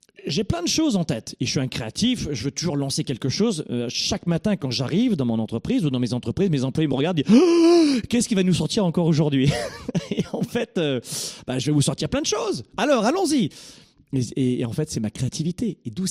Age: 40-59